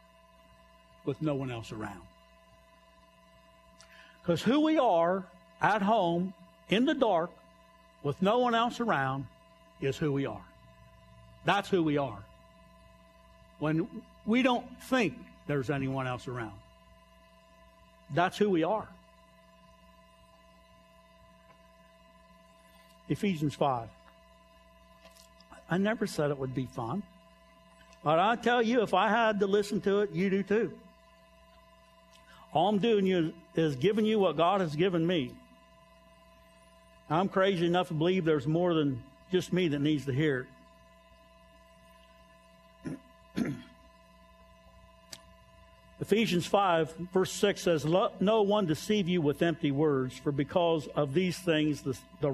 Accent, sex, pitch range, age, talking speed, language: American, male, 155-180 Hz, 60-79, 125 wpm, English